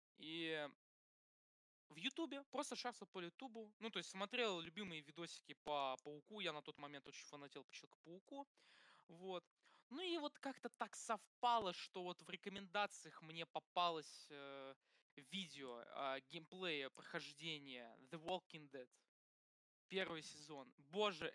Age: 20-39